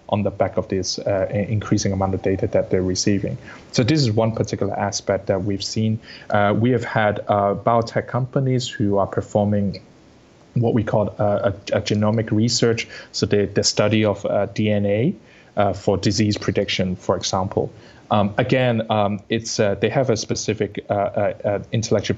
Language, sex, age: English, male, 30-49